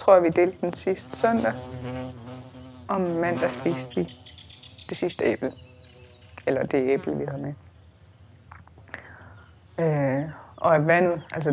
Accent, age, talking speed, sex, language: native, 20-39, 140 wpm, female, Danish